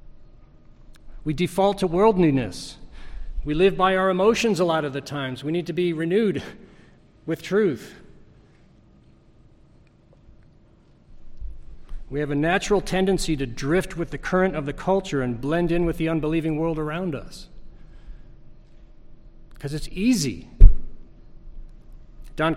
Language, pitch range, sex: English, 140-185 Hz, male